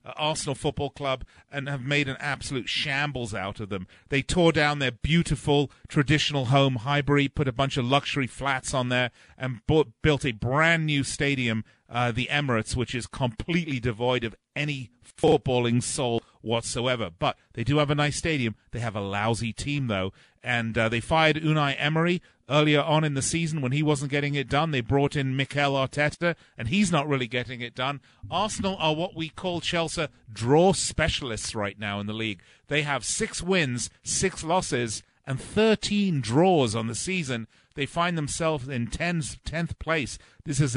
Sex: male